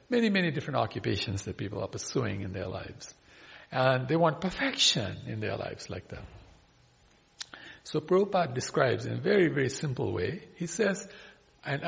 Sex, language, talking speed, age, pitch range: male, English, 160 wpm, 50-69, 115-180 Hz